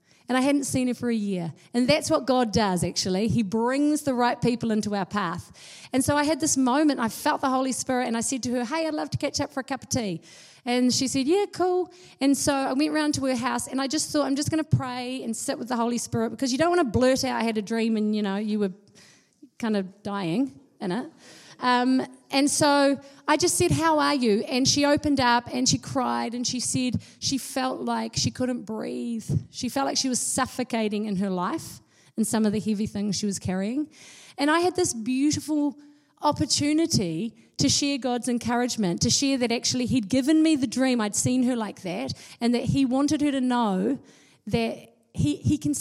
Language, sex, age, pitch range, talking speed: English, female, 40-59, 215-275 Hz, 230 wpm